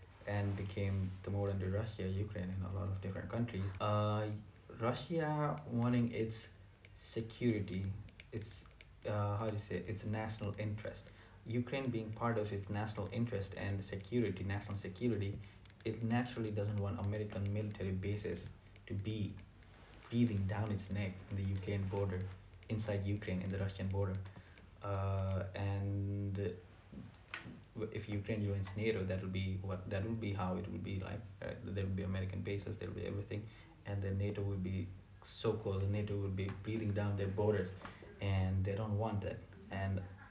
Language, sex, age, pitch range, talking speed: English, male, 20-39, 95-110 Hz, 160 wpm